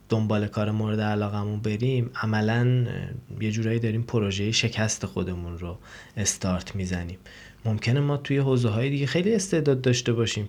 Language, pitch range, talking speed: Persian, 105-135 Hz, 135 wpm